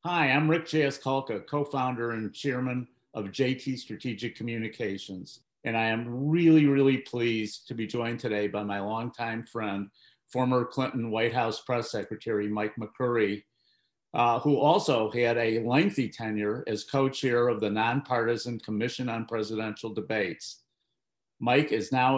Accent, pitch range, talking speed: American, 115-135 Hz, 140 wpm